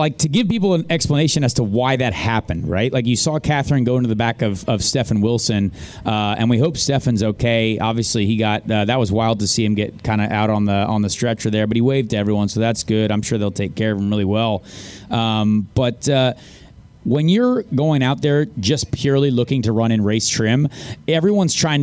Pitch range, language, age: 110-145 Hz, English, 30-49